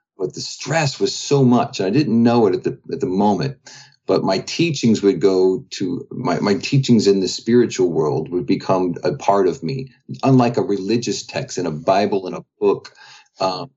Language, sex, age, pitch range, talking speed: English, male, 40-59, 100-135 Hz, 195 wpm